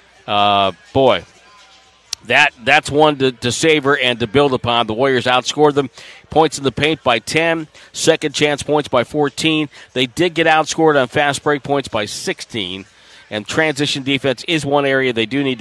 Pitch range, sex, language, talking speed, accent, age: 120-150 Hz, male, English, 175 wpm, American, 50-69